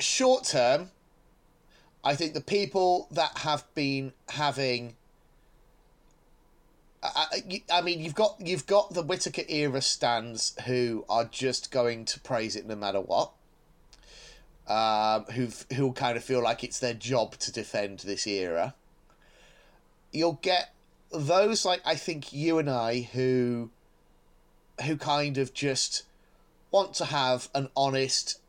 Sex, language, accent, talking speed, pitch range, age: male, English, British, 135 wpm, 115-150 Hz, 30-49